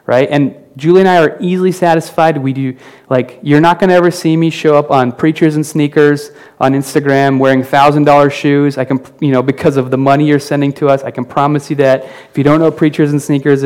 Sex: male